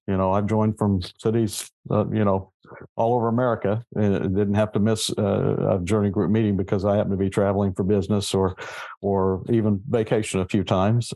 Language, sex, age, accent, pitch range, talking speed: English, male, 50-69, American, 95-115 Hz, 200 wpm